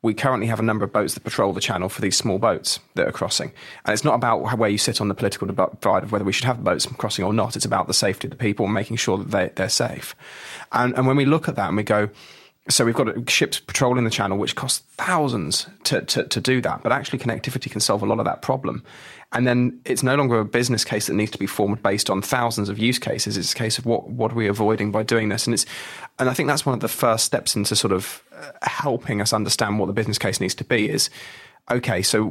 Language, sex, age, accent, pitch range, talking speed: English, male, 20-39, British, 105-120 Hz, 265 wpm